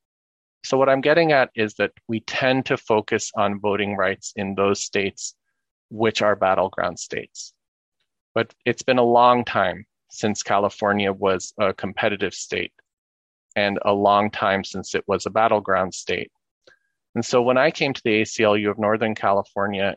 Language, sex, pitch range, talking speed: English, male, 100-120 Hz, 160 wpm